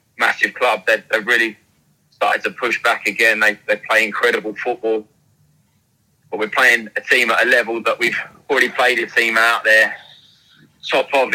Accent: British